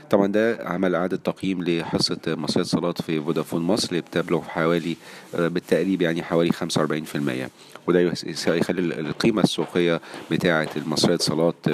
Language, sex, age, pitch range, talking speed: Arabic, male, 40-59, 80-95 Hz, 135 wpm